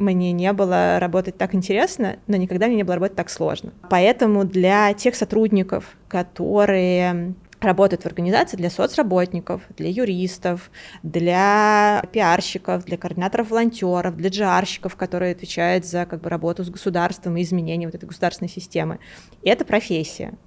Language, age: Russian, 20-39